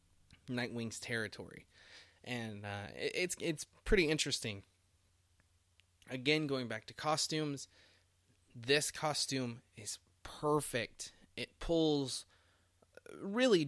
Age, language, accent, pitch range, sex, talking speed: 20-39, English, American, 95-140 Hz, male, 90 wpm